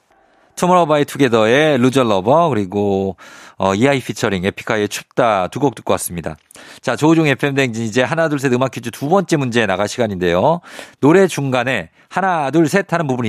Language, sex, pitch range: Korean, male, 130-190 Hz